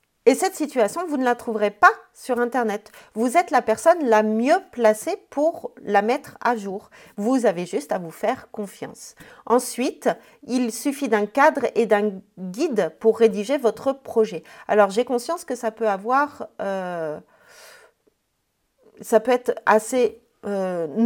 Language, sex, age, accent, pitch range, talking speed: French, female, 40-59, French, 190-240 Hz, 155 wpm